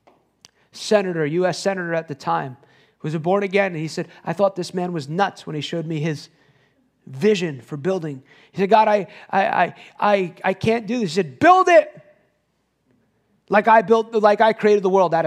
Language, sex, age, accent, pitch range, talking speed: English, male, 30-49, American, 165-220 Hz, 195 wpm